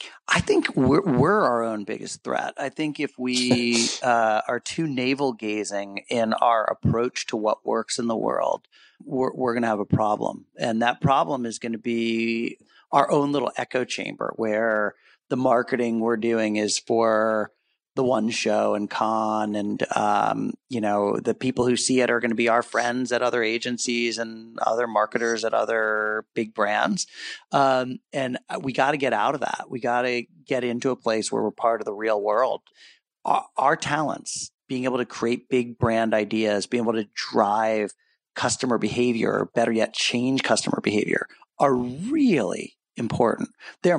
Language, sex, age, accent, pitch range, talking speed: English, male, 40-59, American, 110-130 Hz, 175 wpm